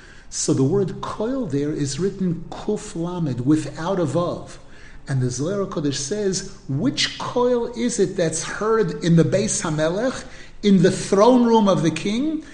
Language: English